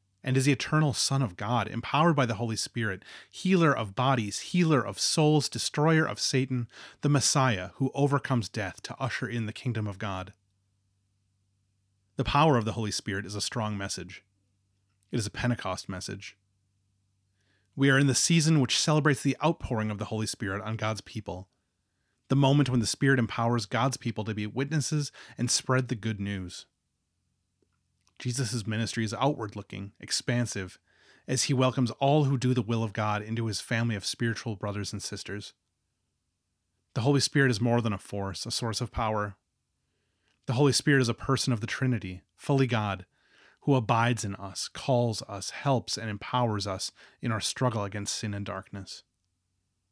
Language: English